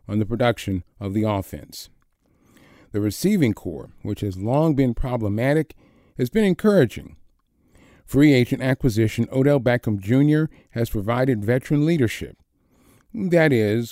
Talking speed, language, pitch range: 125 wpm, English, 105-145 Hz